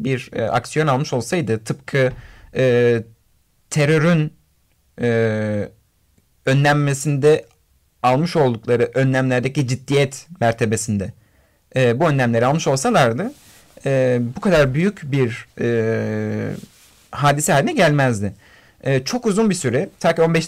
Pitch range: 115-160 Hz